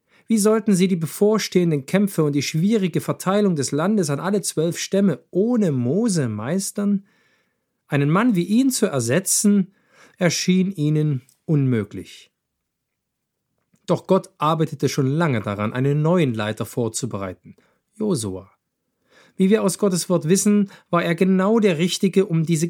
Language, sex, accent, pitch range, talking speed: German, male, German, 140-195 Hz, 135 wpm